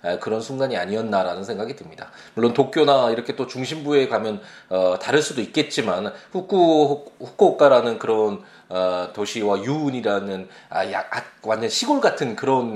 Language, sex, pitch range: Korean, male, 105-150 Hz